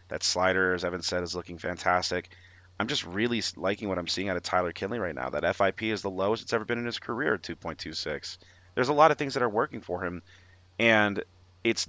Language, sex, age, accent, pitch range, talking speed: English, male, 30-49, American, 90-105 Hz, 225 wpm